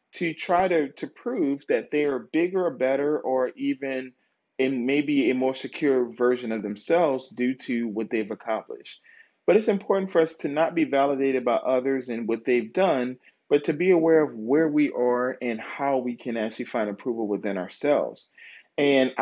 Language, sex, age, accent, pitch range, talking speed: English, male, 40-59, American, 120-155 Hz, 185 wpm